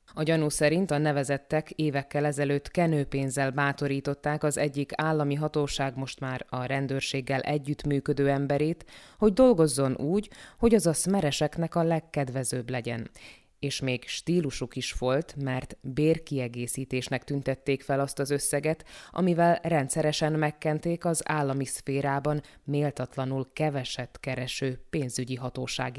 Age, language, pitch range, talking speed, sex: 20-39, Hungarian, 135-155 Hz, 120 wpm, female